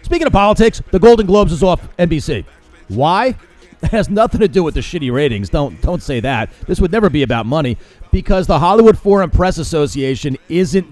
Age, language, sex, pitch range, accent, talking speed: 40-59, English, male, 135-190 Hz, American, 200 wpm